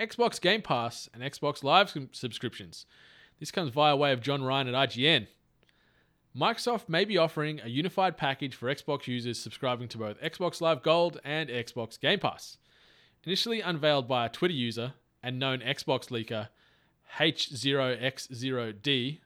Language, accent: English, Australian